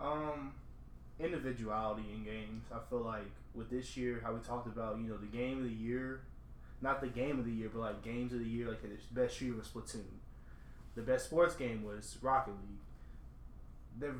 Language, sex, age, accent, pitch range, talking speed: English, male, 20-39, American, 115-130 Hz, 200 wpm